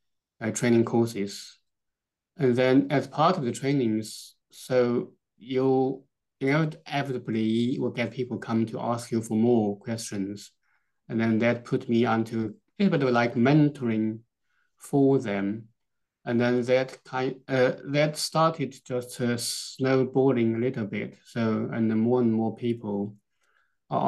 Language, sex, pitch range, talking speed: English, male, 110-130 Hz, 150 wpm